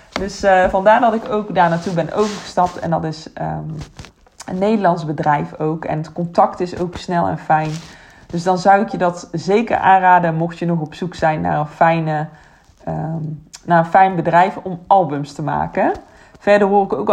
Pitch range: 160-205 Hz